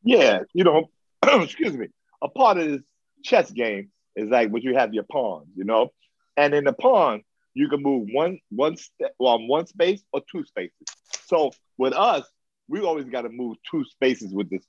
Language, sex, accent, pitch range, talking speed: English, male, American, 110-155 Hz, 195 wpm